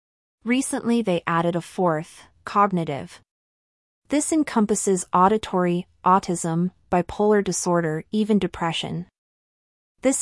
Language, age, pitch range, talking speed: English, 30-49, 170-205 Hz, 90 wpm